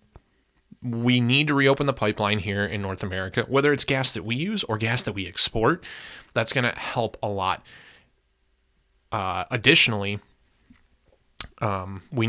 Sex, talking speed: male, 145 wpm